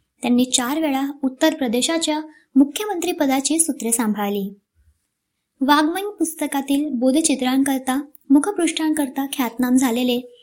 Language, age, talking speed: Marathi, 20-39, 85 wpm